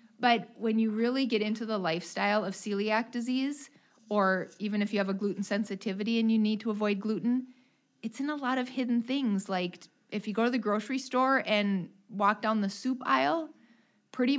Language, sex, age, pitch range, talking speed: English, female, 30-49, 195-240 Hz, 195 wpm